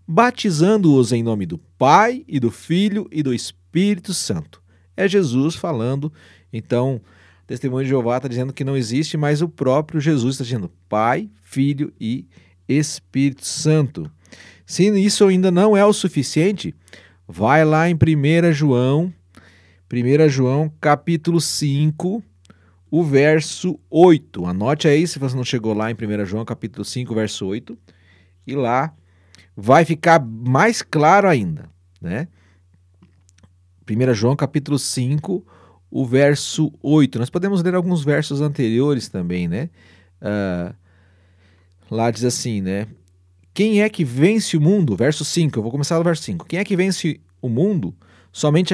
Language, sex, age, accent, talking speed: Portuguese, male, 40-59, Brazilian, 145 wpm